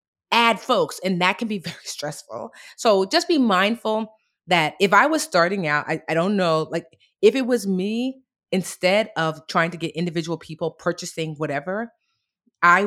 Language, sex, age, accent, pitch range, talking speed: English, female, 30-49, American, 160-200 Hz, 175 wpm